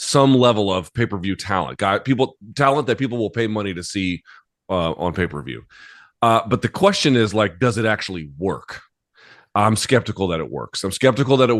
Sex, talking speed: male, 190 wpm